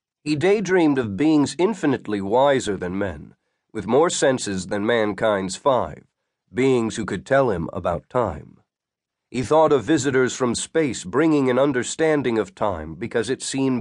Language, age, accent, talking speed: English, 50-69, American, 150 wpm